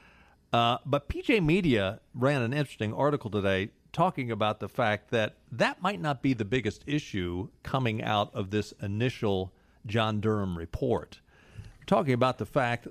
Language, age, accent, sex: English, 50-69, American, male